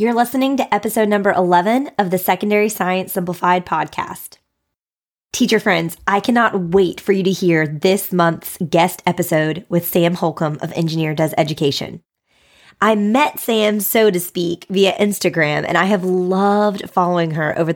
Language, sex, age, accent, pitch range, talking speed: English, female, 20-39, American, 170-205 Hz, 160 wpm